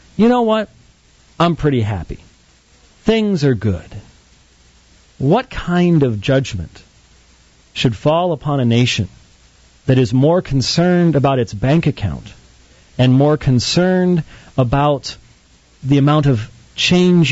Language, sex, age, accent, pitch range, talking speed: English, male, 40-59, American, 100-145 Hz, 120 wpm